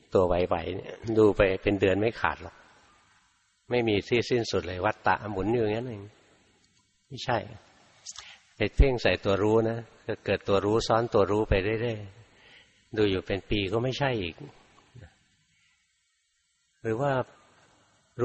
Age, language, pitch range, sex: 60-79, Thai, 95-115 Hz, male